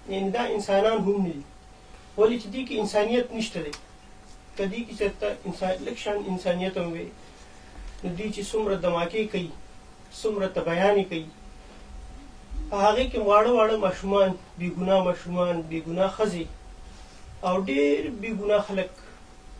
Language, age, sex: Urdu, 40-59, male